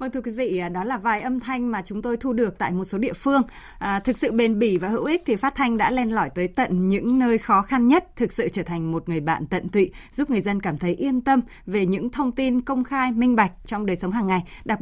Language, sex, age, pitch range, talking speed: Vietnamese, female, 20-39, 180-245 Hz, 280 wpm